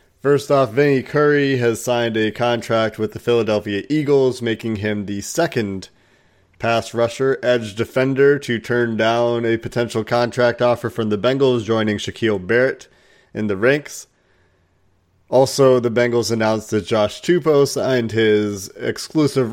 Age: 30-49